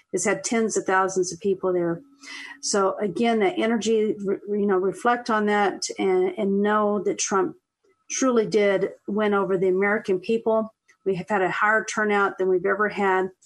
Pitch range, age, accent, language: 185-225 Hz, 50-69, American, English